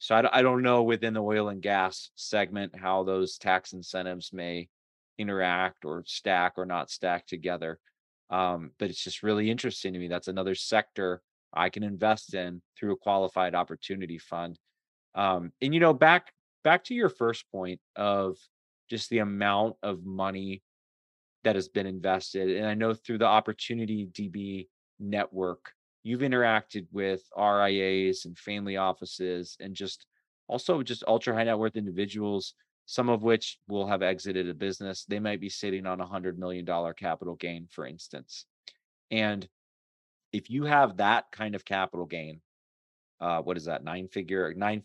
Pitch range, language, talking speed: 90-105 Hz, English, 165 wpm